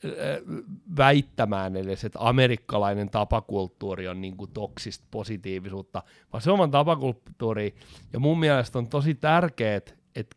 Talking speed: 125 wpm